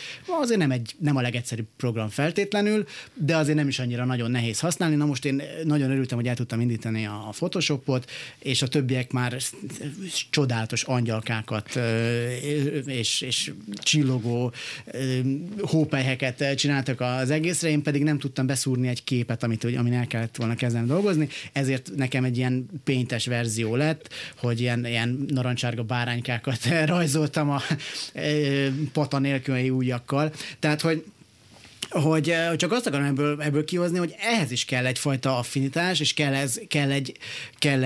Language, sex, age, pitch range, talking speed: Hungarian, male, 30-49, 120-150 Hz, 145 wpm